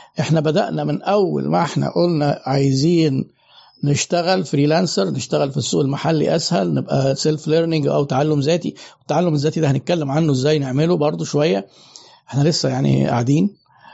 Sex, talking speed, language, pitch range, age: male, 145 wpm, Arabic, 145-190 Hz, 50-69